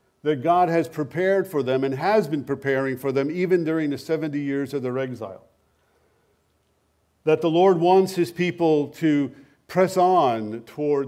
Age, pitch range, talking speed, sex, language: 50-69, 145-190 Hz, 160 wpm, male, English